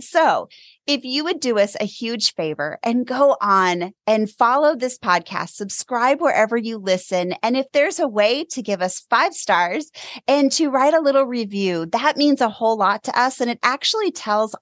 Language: English